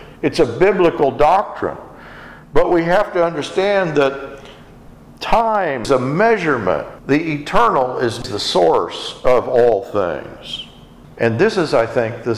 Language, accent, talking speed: English, American, 130 wpm